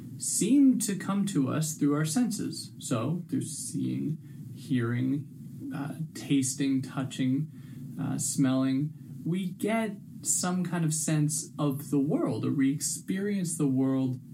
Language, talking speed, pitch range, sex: English, 130 wpm, 130-165 Hz, male